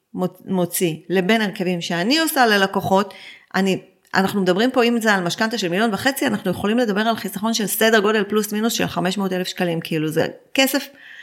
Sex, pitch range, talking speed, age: female, 190-250 Hz, 180 wpm, 30-49